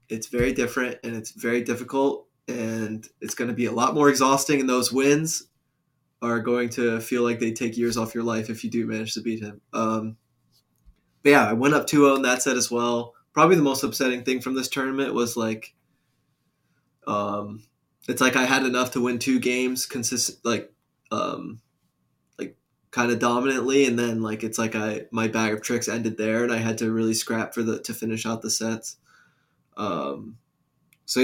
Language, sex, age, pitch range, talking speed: English, male, 20-39, 115-130 Hz, 200 wpm